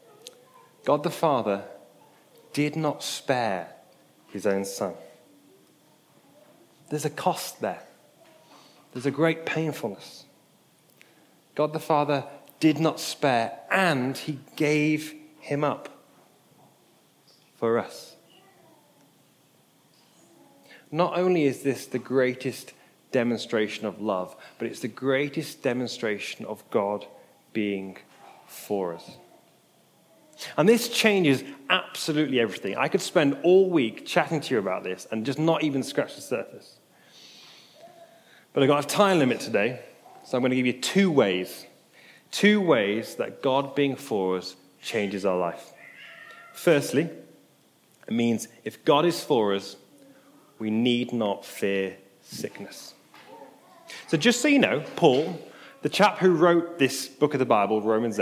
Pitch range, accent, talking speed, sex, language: 115-170 Hz, British, 130 wpm, male, English